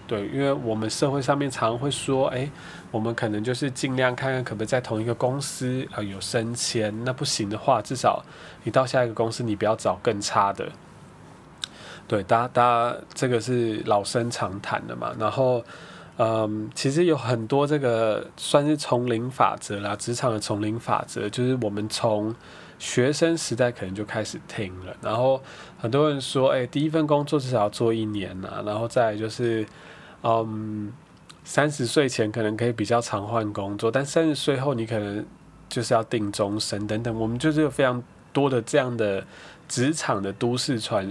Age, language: 20-39, Chinese